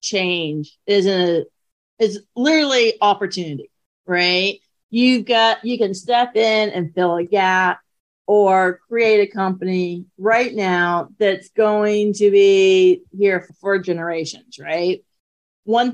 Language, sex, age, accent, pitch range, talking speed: English, female, 40-59, American, 180-230 Hz, 125 wpm